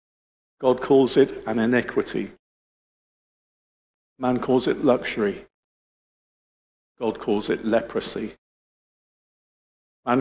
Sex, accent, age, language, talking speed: male, British, 50-69, English, 80 wpm